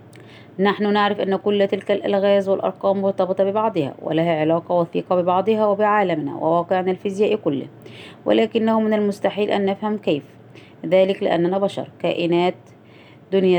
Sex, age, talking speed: female, 20-39, 125 wpm